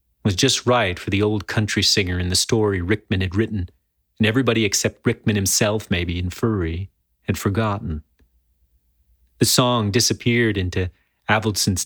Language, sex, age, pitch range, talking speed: English, male, 30-49, 90-125 Hz, 145 wpm